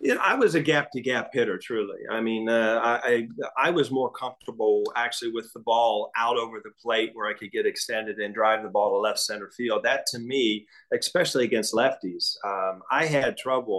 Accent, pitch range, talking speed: American, 115-145 Hz, 205 wpm